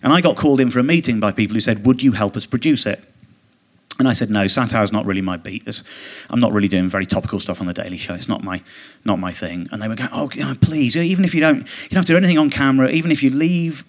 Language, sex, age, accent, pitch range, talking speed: English, male, 30-49, British, 100-135 Hz, 280 wpm